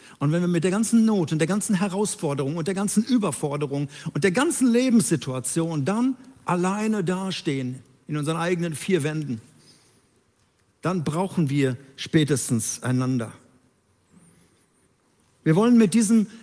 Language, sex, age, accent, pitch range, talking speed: German, male, 60-79, German, 145-205 Hz, 130 wpm